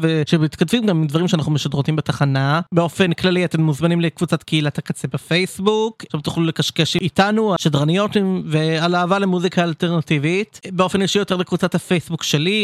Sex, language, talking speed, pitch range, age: male, English, 140 wpm, 155-195 Hz, 20-39